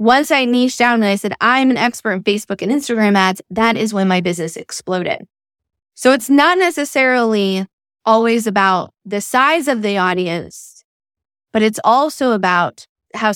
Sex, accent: female, American